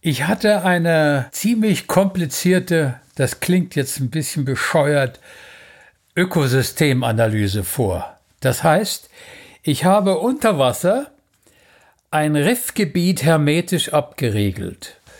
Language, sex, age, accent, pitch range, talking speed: German, male, 60-79, German, 140-190 Hz, 90 wpm